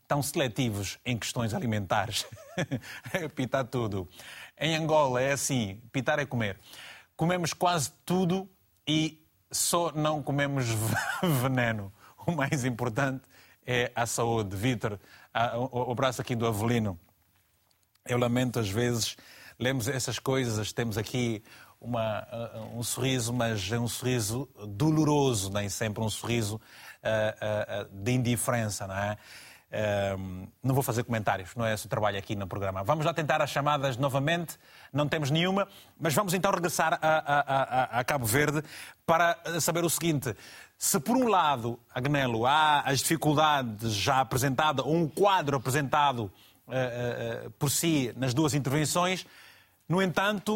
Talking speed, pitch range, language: 145 wpm, 115-160 Hz, Portuguese